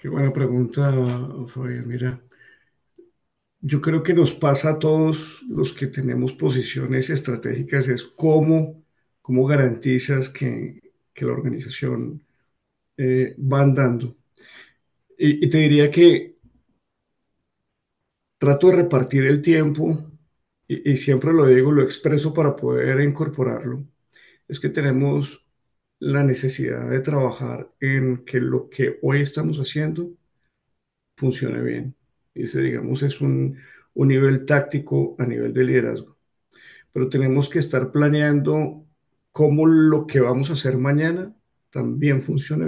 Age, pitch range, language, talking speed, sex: 40-59, 130-155 Hz, Spanish, 125 wpm, male